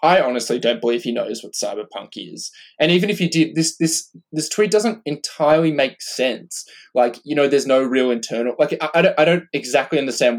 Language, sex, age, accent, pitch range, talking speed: English, male, 20-39, Australian, 120-175 Hz, 215 wpm